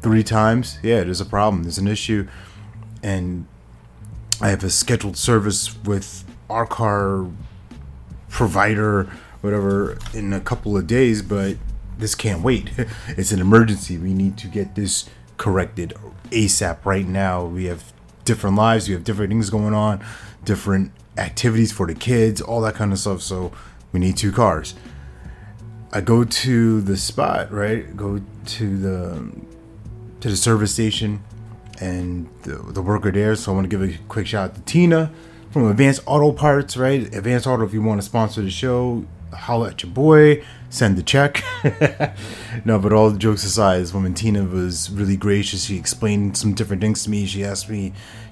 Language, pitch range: English, 95-110 Hz